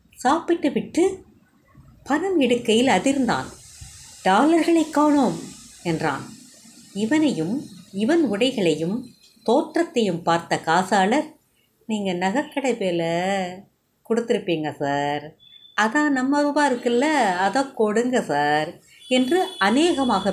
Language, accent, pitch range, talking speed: Tamil, native, 170-275 Hz, 85 wpm